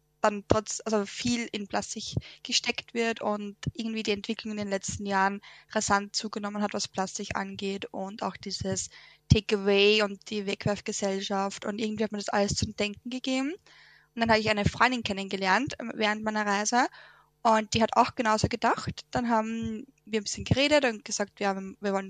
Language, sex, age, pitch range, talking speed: German, female, 10-29, 205-235 Hz, 180 wpm